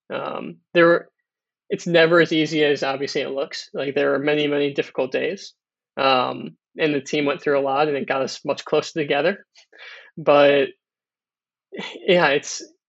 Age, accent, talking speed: 20-39, American, 165 wpm